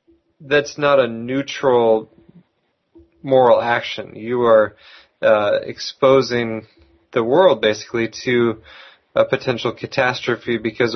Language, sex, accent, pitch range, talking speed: English, male, American, 110-130 Hz, 100 wpm